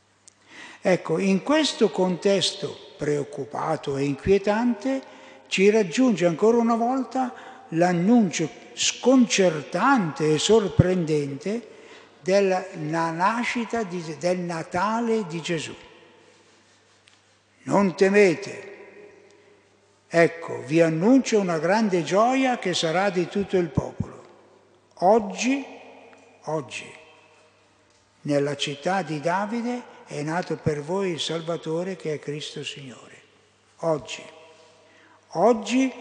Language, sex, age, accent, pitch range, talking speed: Italian, male, 60-79, native, 150-215 Hz, 90 wpm